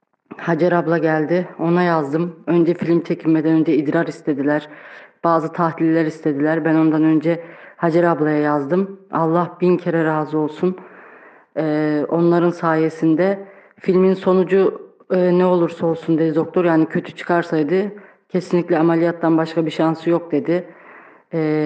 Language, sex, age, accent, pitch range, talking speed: Turkish, female, 30-49, native, 160-180 Hz, 130 wpm